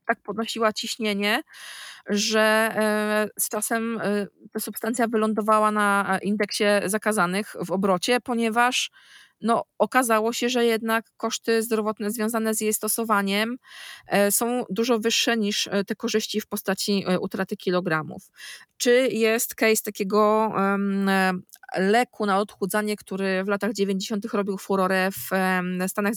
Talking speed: 115 wpm